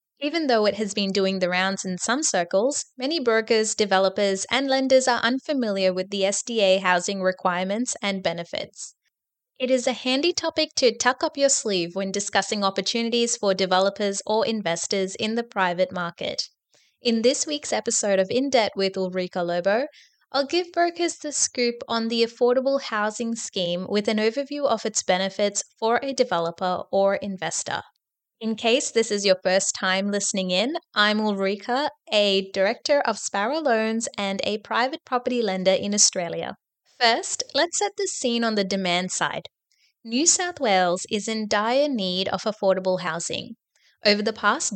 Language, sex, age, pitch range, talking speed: English, female, 20-39, 195-255 Hz, 165 wpm